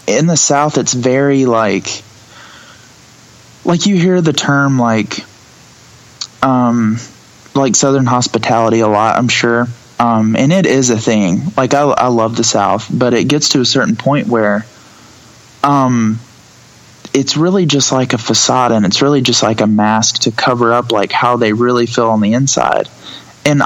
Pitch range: 115-135 Hz